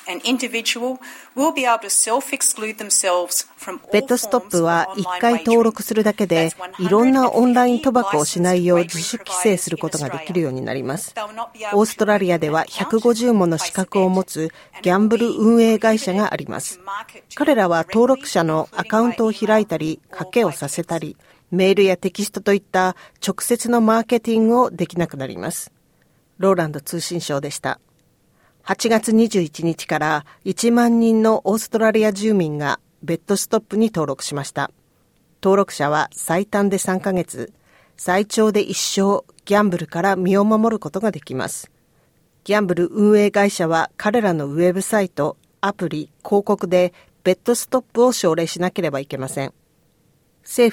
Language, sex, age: Japanese, female, 40-59